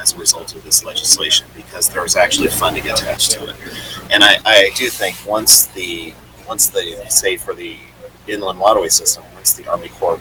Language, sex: English, male